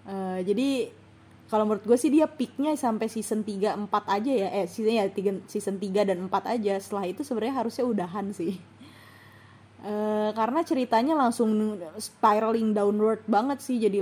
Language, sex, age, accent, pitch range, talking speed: Indonesian, female, 20-39, native, 185-230 Hz, 155 wpm